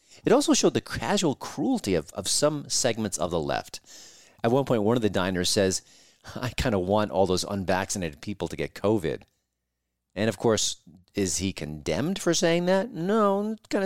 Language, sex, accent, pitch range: English, male, American, 80-130 Hz